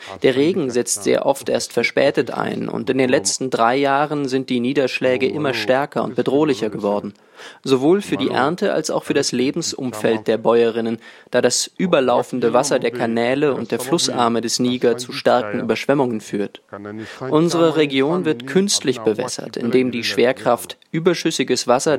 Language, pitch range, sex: German, 115-150 Hz, male